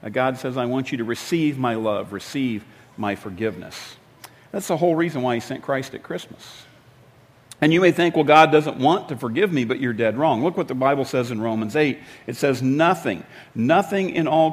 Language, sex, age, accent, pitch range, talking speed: English, male, 50-69, American, 120-165 Hz, 210 wpm